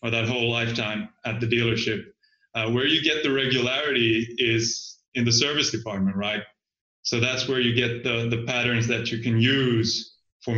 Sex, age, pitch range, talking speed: male, 30-49, 115-125 Hz, 180 wpm